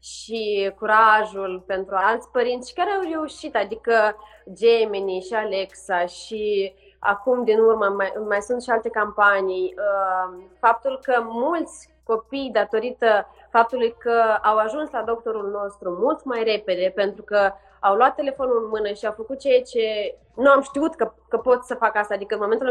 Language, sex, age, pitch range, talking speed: Romanian, female, 20-39, 205-250 Hz, 165 wpm